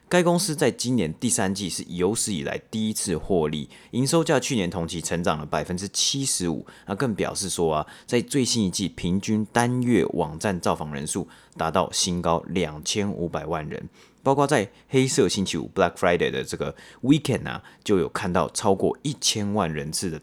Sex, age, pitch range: male, 30-49, 85-115 Hz